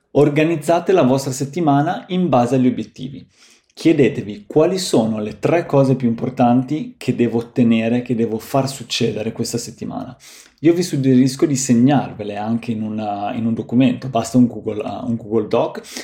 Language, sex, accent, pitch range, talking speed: Italian, male, native, 115-140 Hz, 150 wpm